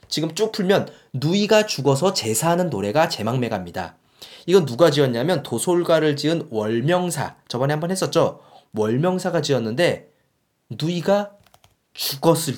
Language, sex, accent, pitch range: Korean, male, native, 120-165 Hz